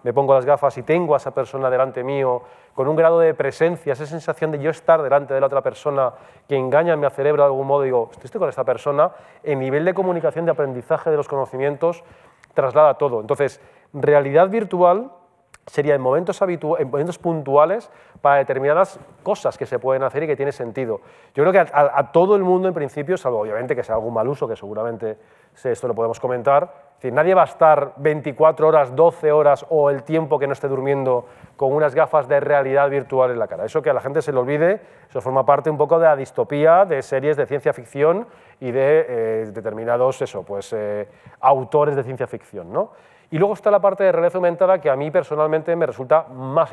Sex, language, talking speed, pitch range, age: male, Spanish, 215 wpm, 130-165 Hz, 30-49